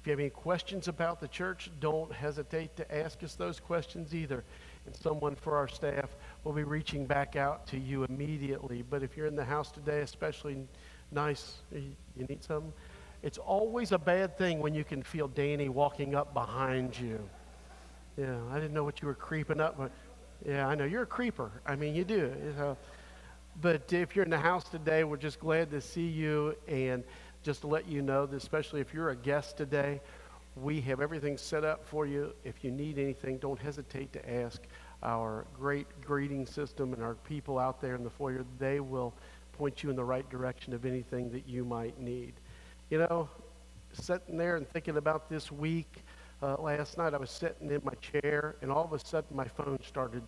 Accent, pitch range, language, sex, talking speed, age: American, 130-155 Hz, English, male, 200 wpm, 50-69